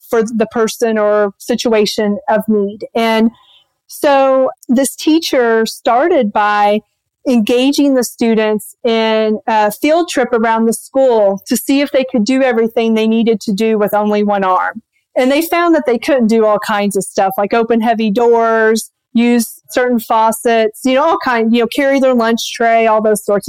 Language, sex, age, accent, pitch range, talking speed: English, female, 40-59, American, 220-270 Hz, 175 wpm